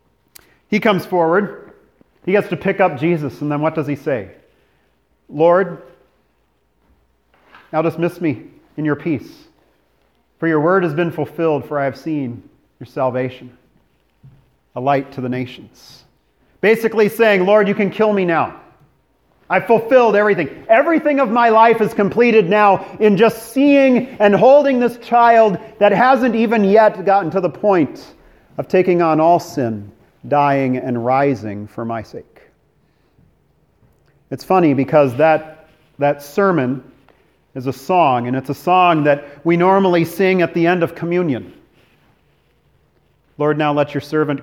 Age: 40-59